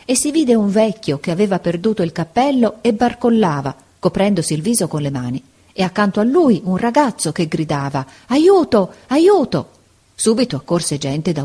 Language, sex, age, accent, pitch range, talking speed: Italian, female, 40-59, native, 150-220 Hz, 170 wpm